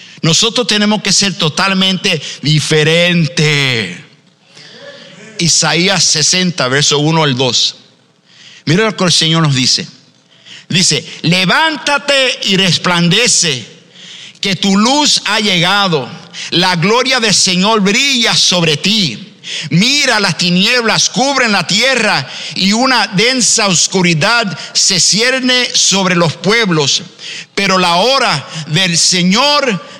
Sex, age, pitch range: male, 50-69, 150-205 Hz